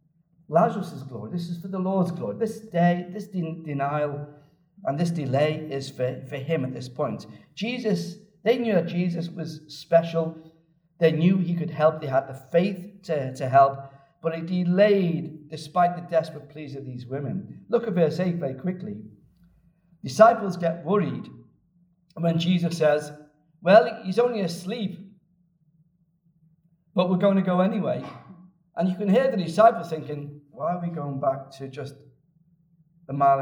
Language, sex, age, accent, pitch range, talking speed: English, male, 50-69, British, 145-195 Hz, 160 wpm